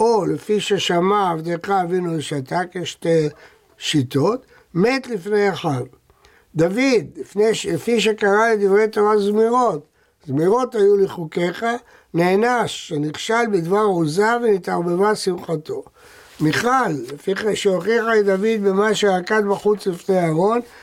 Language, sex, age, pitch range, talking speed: Hebrew, male, 60-79, 170-220 Hz, 110 wpm